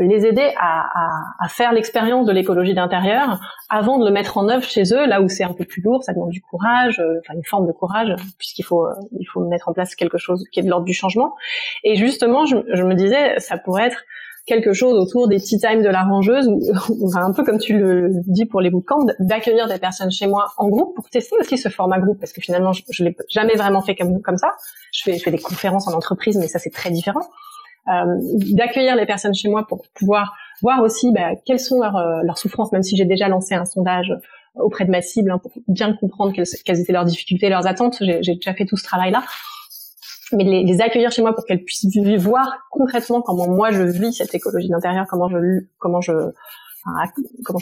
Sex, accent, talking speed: female, French, 235 wpm